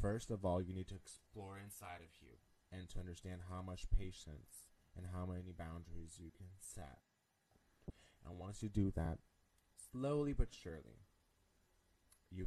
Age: 20-39